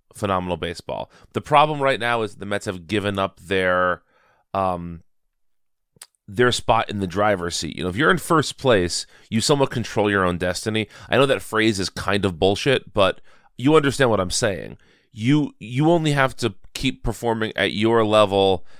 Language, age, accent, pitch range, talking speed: English, 30-49, American, 95-115 Hz, 180 wpm